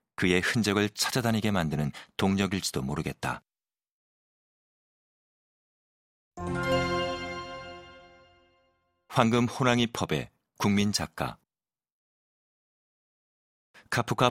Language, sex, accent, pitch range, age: Korean, male, native, 90-105 Hz, 40-59